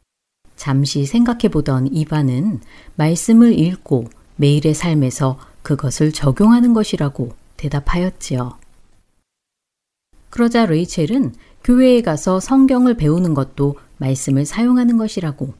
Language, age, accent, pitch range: Korean, 40-59, native, 135-195 Hz